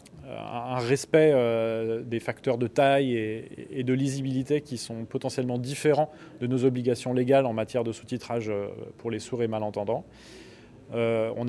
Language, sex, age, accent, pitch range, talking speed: French, male, 20-39, French, 120-145 Hz, 140 wpm